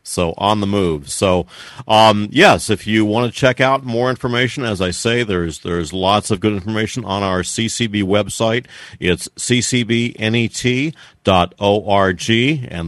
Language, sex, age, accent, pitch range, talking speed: English, male, 50-69, American, 95-115 Hz, 145 wpm